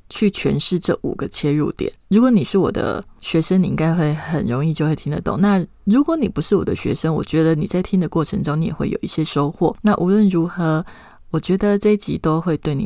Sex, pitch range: female, 160-215 Hz